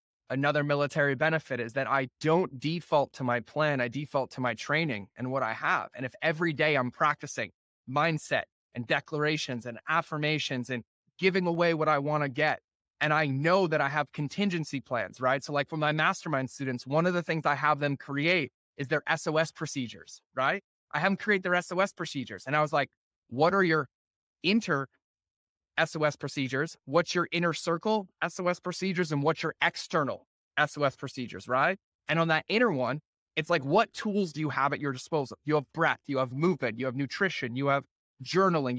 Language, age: English, 20-39